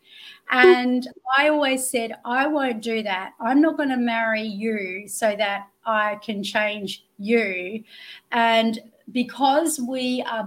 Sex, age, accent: female, 30-49, Australian